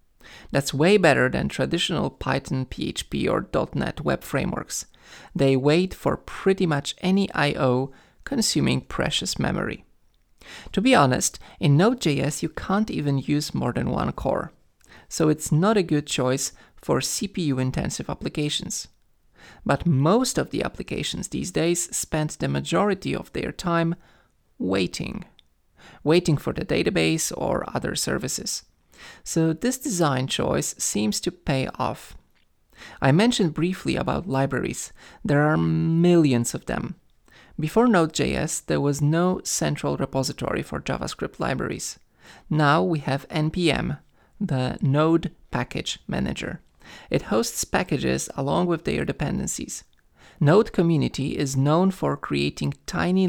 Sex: male